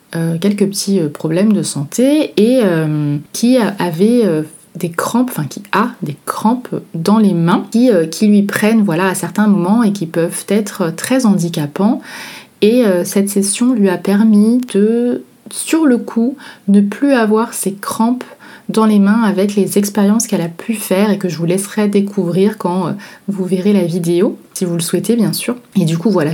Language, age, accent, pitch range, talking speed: French, 20-39, French, 180-225 Hz, 195 wpm